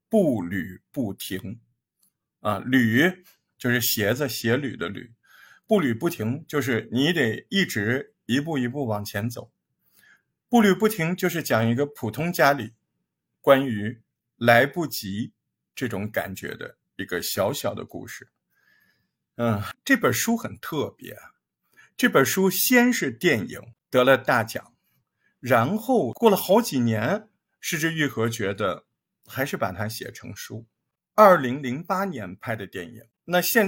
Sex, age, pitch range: male, 50-69, 115-175 Hz